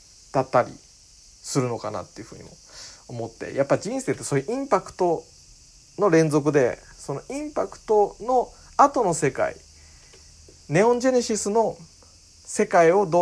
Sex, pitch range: male, 120-195 Hz